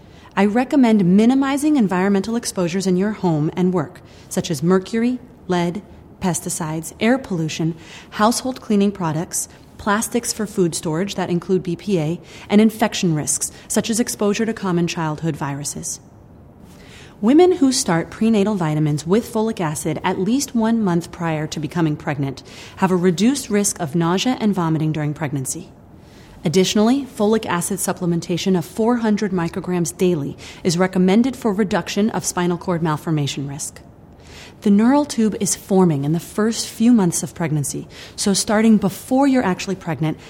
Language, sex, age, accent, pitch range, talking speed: English, female, 30-49, American, 165-215 Hz, 145 wpm